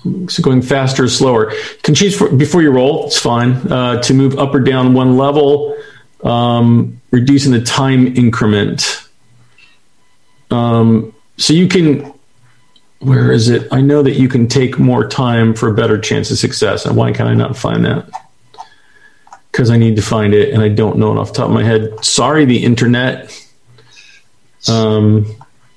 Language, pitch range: English, 115-140 Hz